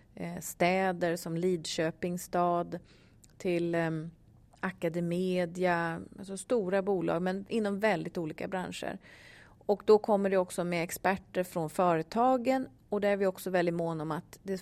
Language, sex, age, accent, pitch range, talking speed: Swedish, female, 30-49, native, 170-195 Hz, 135 wpm